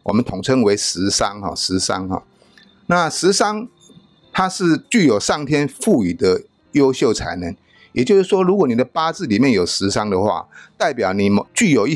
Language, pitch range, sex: Chinese, 120-175 Hz, male